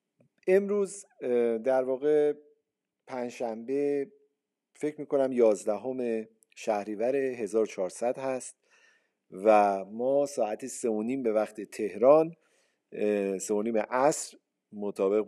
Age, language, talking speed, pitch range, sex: 50-69, Persian, 85 wpm, 120-185 Hz, male